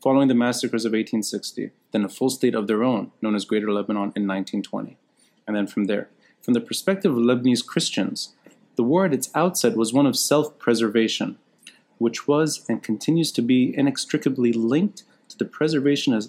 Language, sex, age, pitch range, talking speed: English, male, 30-49, 115-145 Hz, 175 wpm